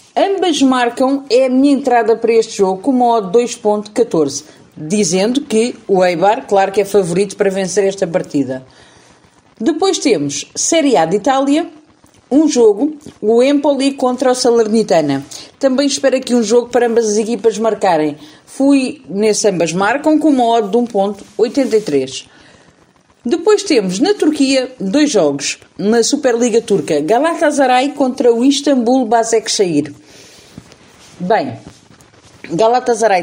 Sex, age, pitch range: female, 40-59, 195-265 Hz